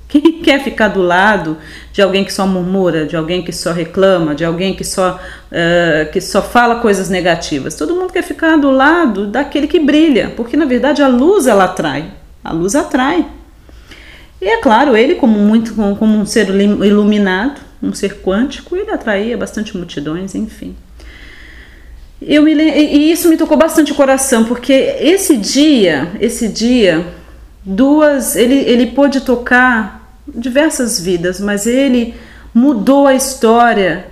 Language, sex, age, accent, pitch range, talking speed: Portuguese, female, 30-49, Brazilian, 195-265 Hz, 155 wpm